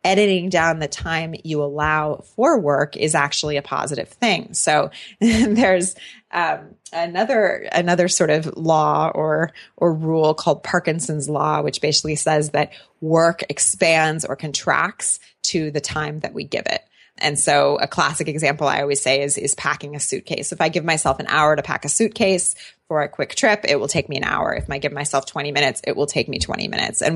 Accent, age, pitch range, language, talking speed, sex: American, 20-39, 145-170 Hz, English, 195 wpm, female